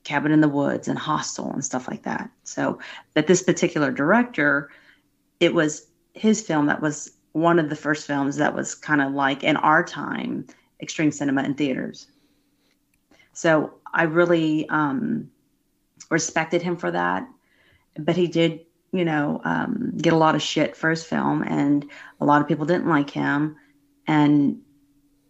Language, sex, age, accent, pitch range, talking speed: English, female, 30-49, American, 140-165 Hz, 165 wpm